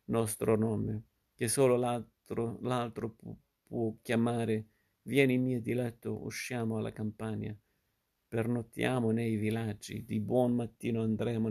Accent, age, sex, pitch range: native, 50-69, male, 110-115 Hz